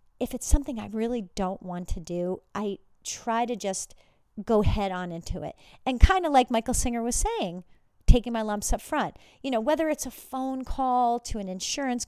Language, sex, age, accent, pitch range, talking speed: English, female, 40-59, American, 190-245 Hz, 205 wpm